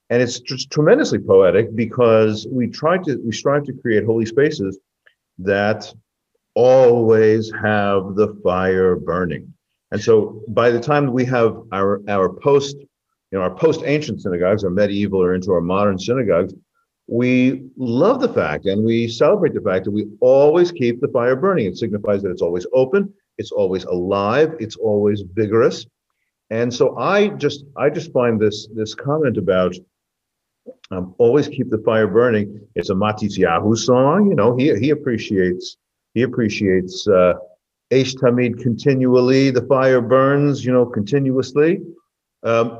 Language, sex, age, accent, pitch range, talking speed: English, male, 50-69, American, 105-140 Hz, 155 wpm